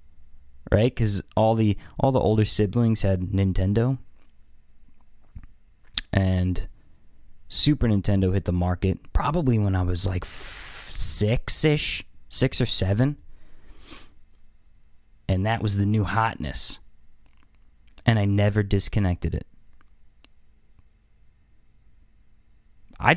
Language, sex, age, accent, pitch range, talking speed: English, male, 20-39, American, 90-120 Hz, 95 wpm